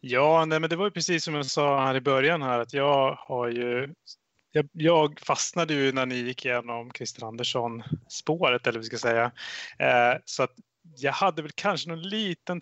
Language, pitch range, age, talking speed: Swedish, 125-155 Hz, 30-49, 200 wpm